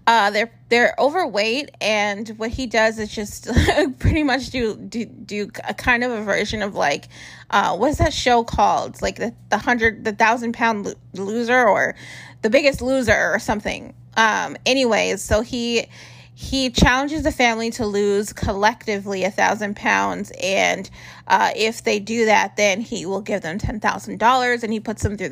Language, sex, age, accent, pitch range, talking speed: English, female, 20-39, American, 205-240 Hz, 180 wpm